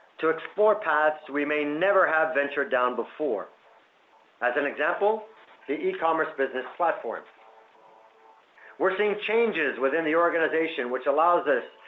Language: English